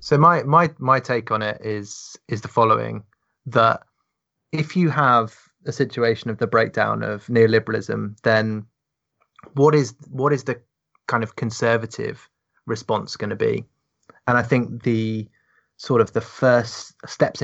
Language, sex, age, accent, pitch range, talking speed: English, male, 20-39, British, 110-135 Hz, 150 wpm